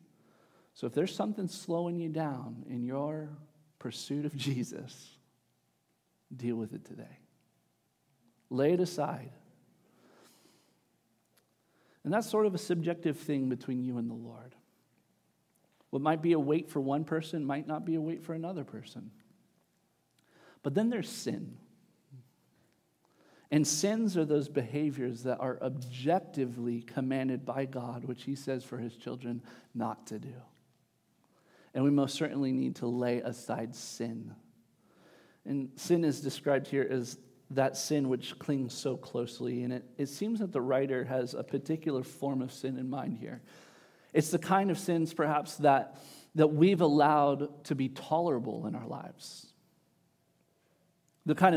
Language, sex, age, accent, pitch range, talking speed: English, male, 50-69, American, 125-160 Hz, 145 wpm